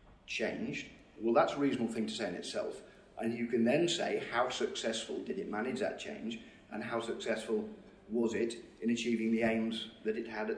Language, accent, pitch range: English, British, 110-140 Hz